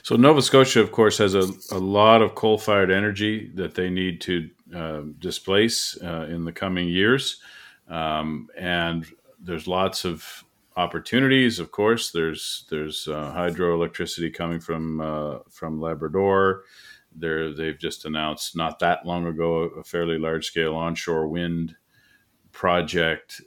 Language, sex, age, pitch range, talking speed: English, male, 40-59, 80-90 Hz, 140 wpm